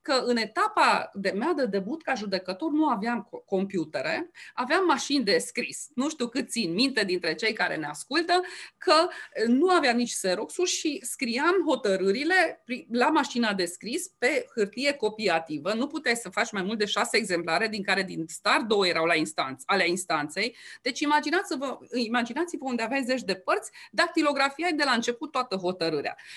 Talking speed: 170 wpm